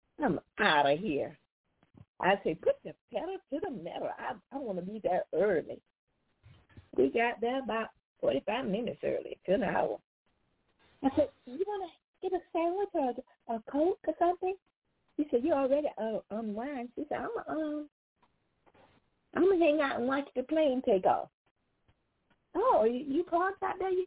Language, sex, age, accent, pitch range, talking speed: English, female, 40-59, American, 210-345 Hz, 175 wpm